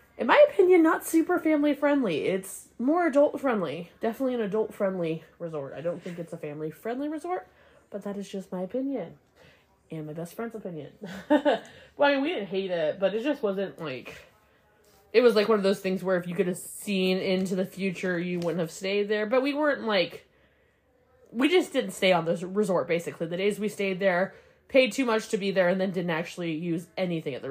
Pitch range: 180-230 Hz